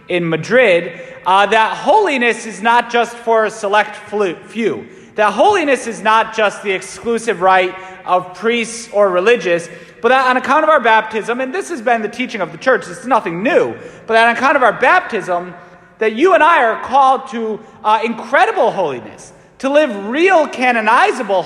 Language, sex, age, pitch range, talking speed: English, male, 30-49, 185-245 Hz, 180 wpm